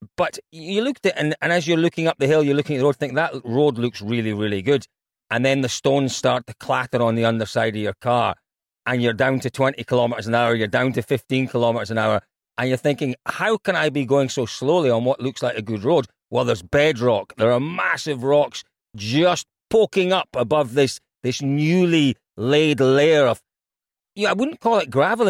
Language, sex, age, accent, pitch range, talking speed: English, male, 40-59, British, 115-160 Hz, 215 wpm